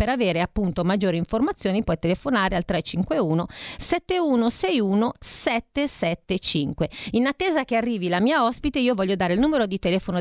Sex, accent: female, native